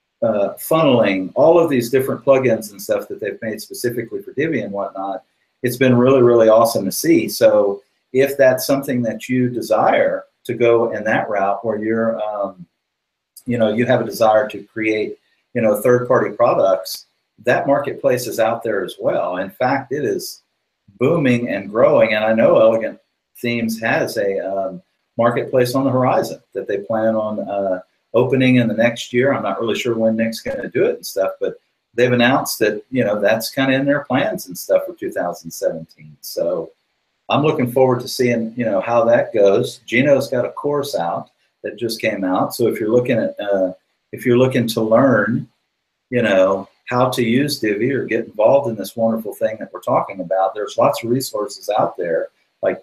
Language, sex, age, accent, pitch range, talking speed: English, male, 50-69, American, 110-135 Hz, 195 wpm